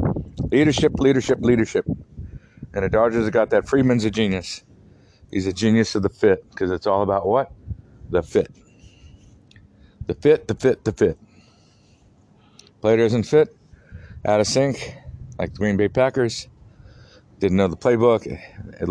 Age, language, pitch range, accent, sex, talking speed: 50-69, English, 95-150 Hz, American, male, 150 wpm